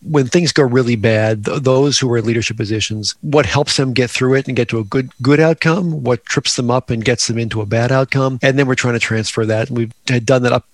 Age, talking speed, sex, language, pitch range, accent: 40-59, 275 wpm, male, English, 115-135 Hz, American